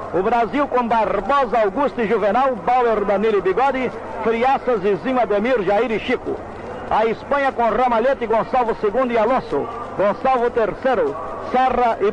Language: English